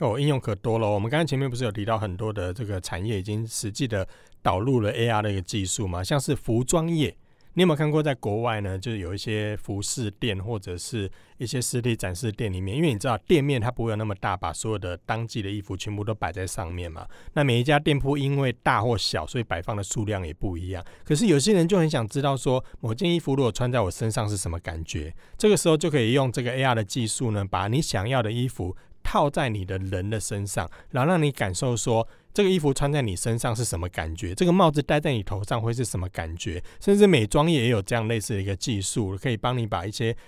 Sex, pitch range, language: male, 100-140 Hz, Chinese